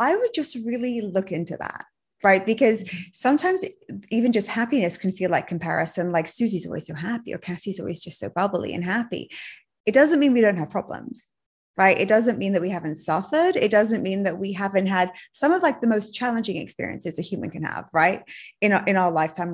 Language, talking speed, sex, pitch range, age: English, 210 wpm, female, 180-235 Hz, 20-39